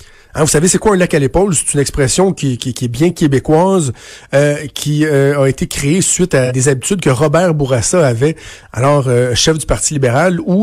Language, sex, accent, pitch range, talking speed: French, male, Canadian, 135-170 Hz, 220 wpm